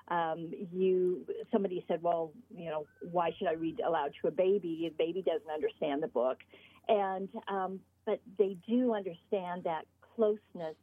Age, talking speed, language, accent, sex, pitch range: 50-69, 160 wpm, English, American, female, 175-210 Hz